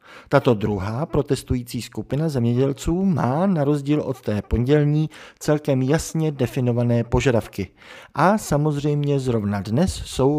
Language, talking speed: Czech, 115 wpm